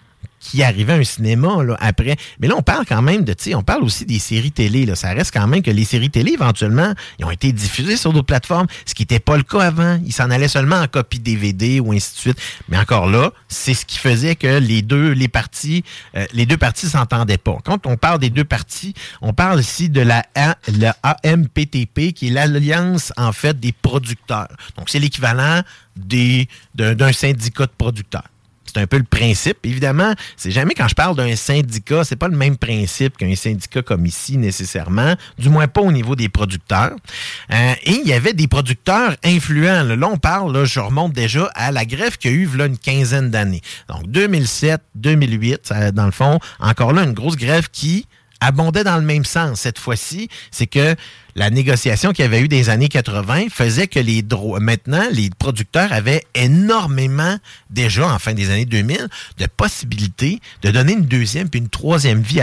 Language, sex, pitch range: French, male, 110-155 Hz